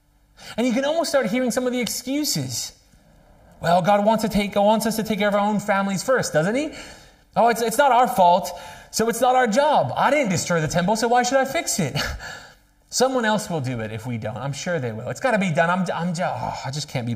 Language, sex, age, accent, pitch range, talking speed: English, male, 30-49, American, 145-210 Hz, 255 wpm